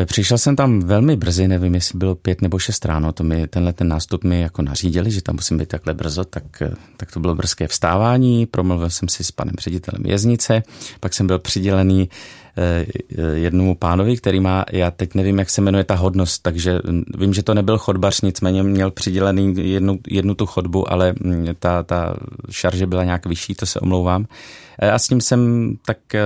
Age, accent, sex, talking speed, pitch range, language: 30-49, native, male, 185 wpm, 90-100 Hz, Czech